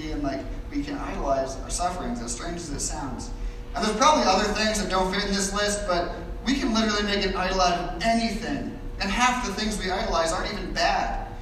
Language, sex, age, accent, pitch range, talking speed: English, male, 30-49, American, 135-195 Hz, 215 wpm